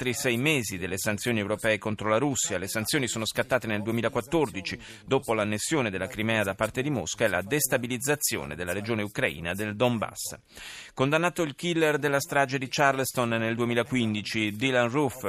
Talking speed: 160 wpm